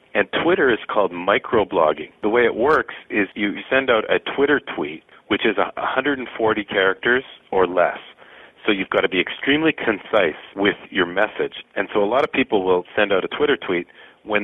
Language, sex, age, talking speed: English, male, 40-59, 185 wpm